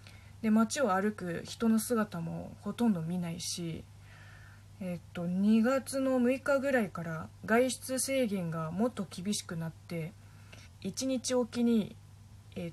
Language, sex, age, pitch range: Japanese, female, 20-39, 155-240 Hz